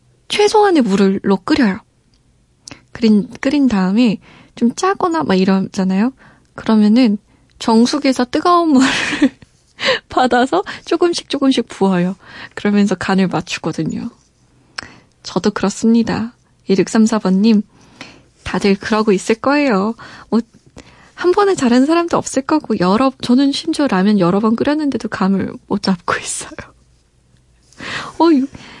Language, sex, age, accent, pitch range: Korean, female, 20-39, native, 200-280 Hz